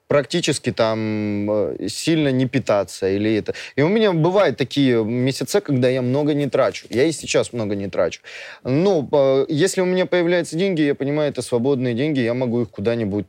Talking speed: 175 wpm